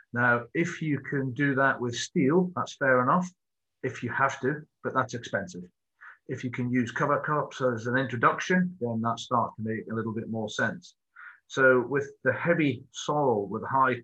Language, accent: English, British